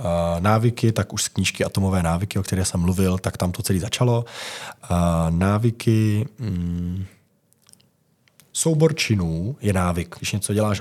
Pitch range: 95-125 Hz